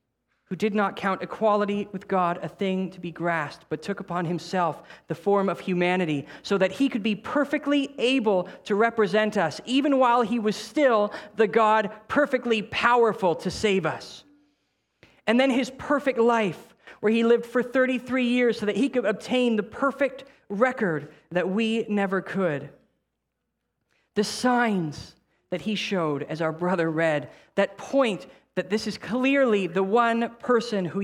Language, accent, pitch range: English, American, 165-230 Hz